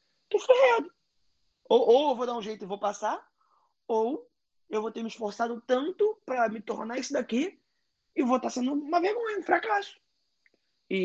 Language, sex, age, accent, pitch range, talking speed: Portuguese, male, 20-39, Brazilian, 195-270 Hz, 185 wpm